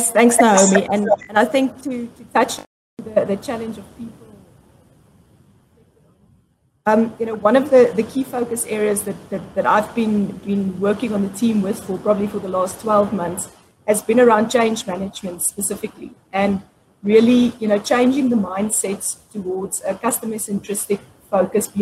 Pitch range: 195-225 Hz